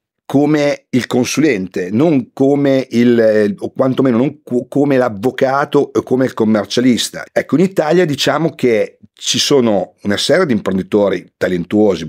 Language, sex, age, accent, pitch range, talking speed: Italian, male, 50-69, native, 105-130 Hz, 140 wpm